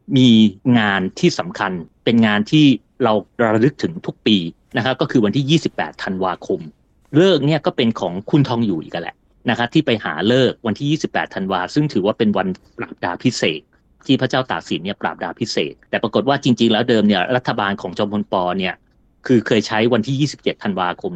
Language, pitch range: Thai, 105-140 Hz